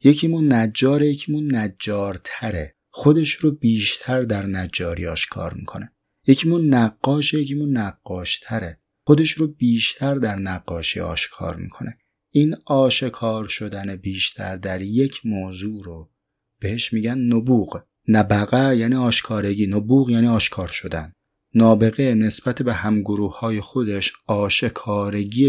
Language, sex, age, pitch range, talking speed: Persian, male, 30-49, 100-130 Hz, 110 wpm